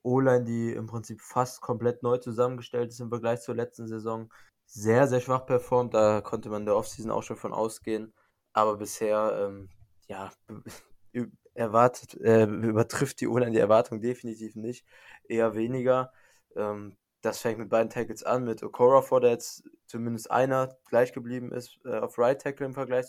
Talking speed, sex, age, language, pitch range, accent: 175 wpm, male, 20-39, German, 105-125 Hz, German